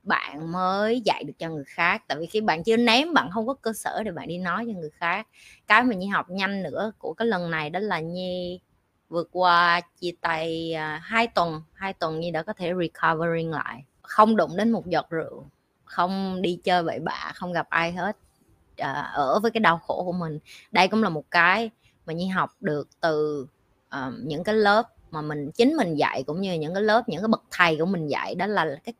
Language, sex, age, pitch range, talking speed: Vietnamese, female, 20-39, 165-225 Hz, 220 wpm